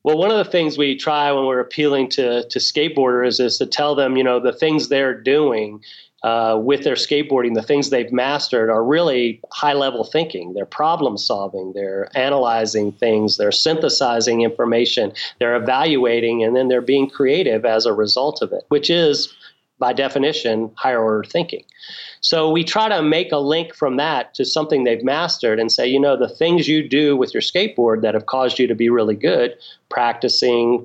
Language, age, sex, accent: English, 30-49, male, American